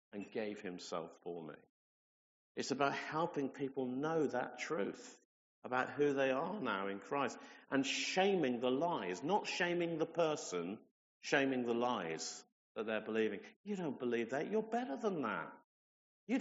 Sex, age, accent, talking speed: male, 50-69, British, 155 wpm